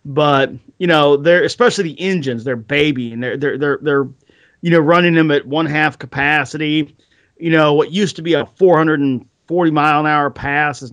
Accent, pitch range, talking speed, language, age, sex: American, 140-170 Hz, 170 wpm, English, 40-59, male